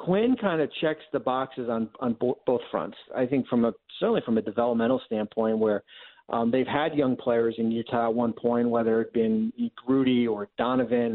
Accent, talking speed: American, 205 wpm